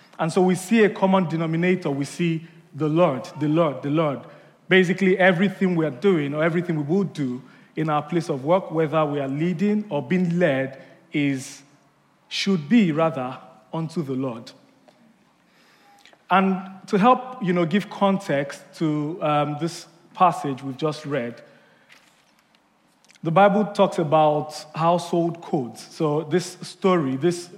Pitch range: 150-180 Hz